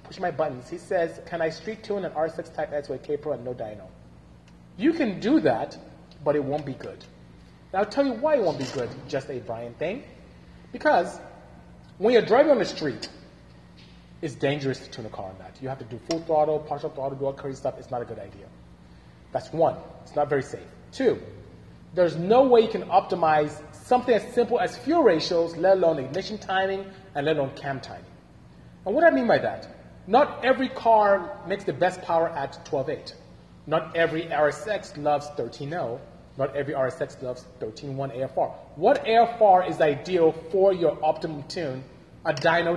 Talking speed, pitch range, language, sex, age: 190 wpm, 130-195 Hz, English, male, 30-49